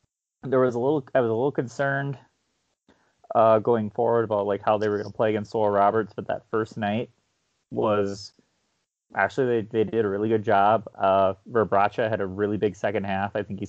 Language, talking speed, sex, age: English, 200 wpm, male, 30-49